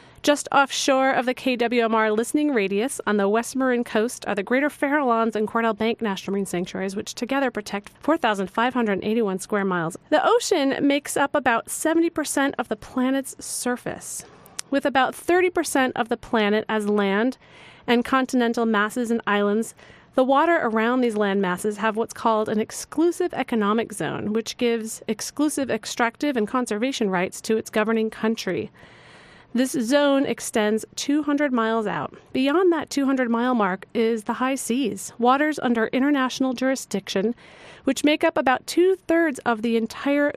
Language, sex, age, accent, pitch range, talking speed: English, female, 30-49, American, 220-275 Hz, 150 wpm